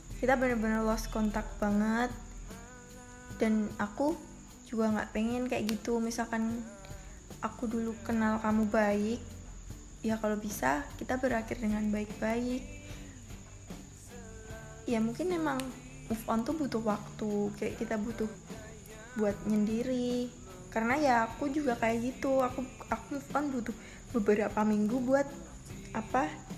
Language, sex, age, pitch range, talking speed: Indonesian, female, 20-39, 210-240 Hz, 120 wpm